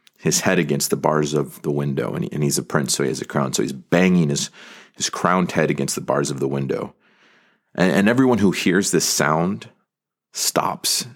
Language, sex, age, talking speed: English, male, 30-49, 215 wpm